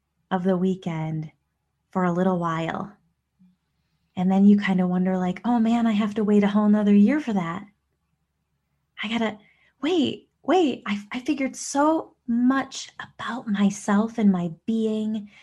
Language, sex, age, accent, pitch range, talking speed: English, female, 20-39, American, 165-210 Hz, 155 wpm